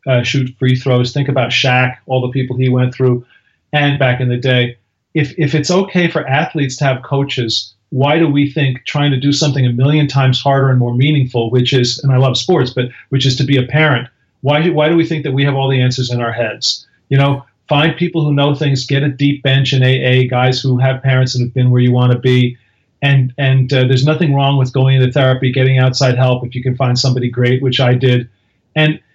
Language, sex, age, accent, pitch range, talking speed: English, male, 40-59, American, 125-145 Hz, 240 wpm